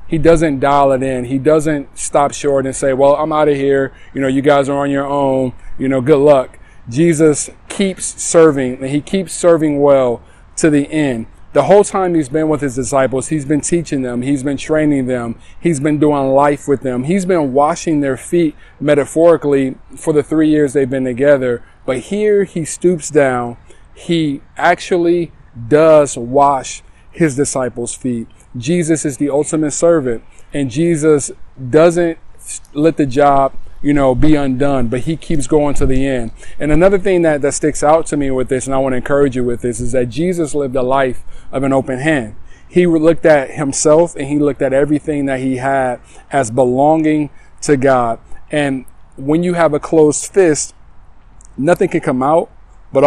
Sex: male